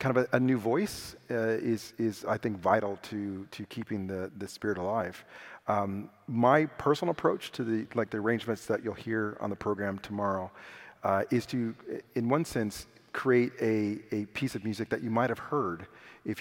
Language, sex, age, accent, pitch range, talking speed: English, male, 40-59, American, 100-125 Hz, 195 wpm